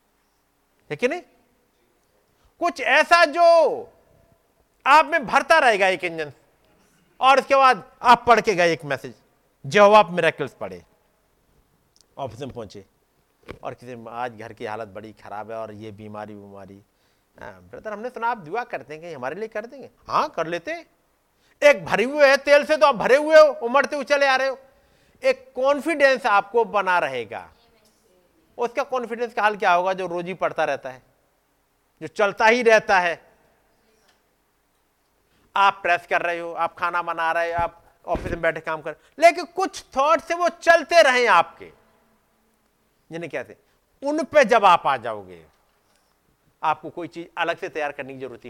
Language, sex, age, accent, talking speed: Hindi, male, 50-69, native, 160 wpm